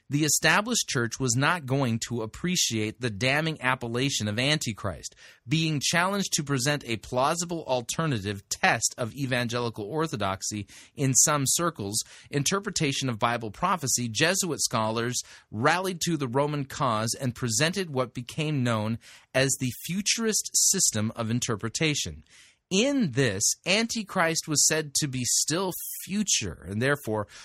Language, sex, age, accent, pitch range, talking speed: English, male, 30-49, American, 115-155 Hz, 130 wpm